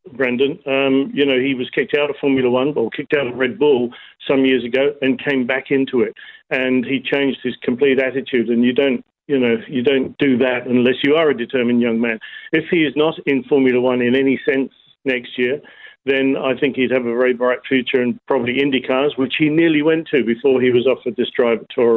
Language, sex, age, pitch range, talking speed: English, male, 50-69, 125-145 Hz, 235 wpm